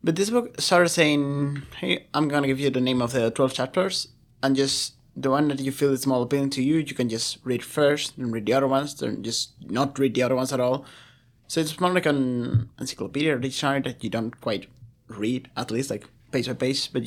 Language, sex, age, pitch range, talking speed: English, male, 30-49, 120-140 Hz, 240 wpm